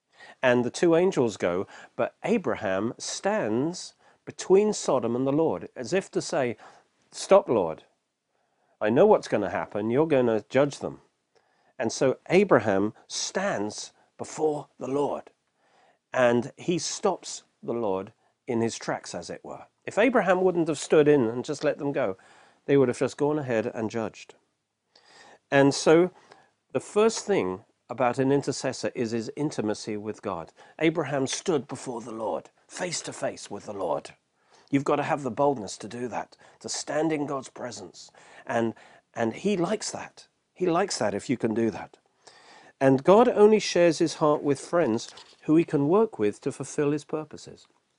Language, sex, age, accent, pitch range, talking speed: English, male, 40-59, British, 115-155 Hz, 170 wpm